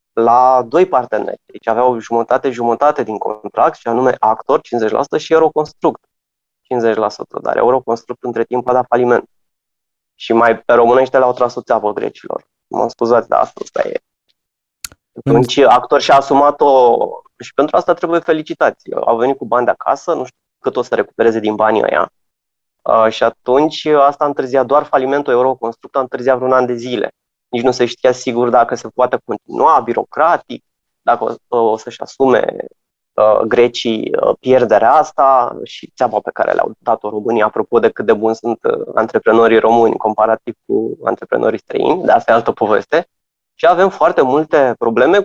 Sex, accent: male, native